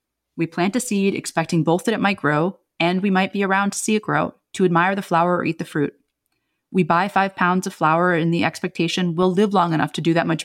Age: 30-49